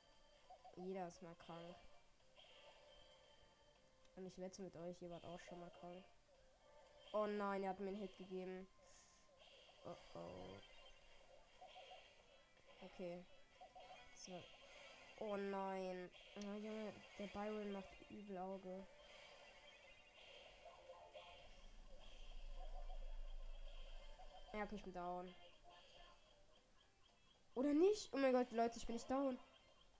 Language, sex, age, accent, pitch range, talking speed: German, female, 20-39, German, 190-225 Hz, 100 wpm